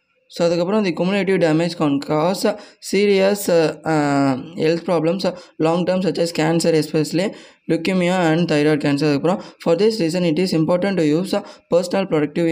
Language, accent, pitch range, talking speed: Tamil, native, 155-185 Hz, 145 wpm